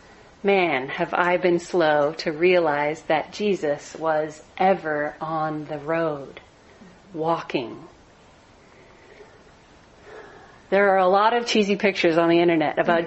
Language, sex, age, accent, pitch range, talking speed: English, female, 40-59, American, 170-215 Hz, 120 wpm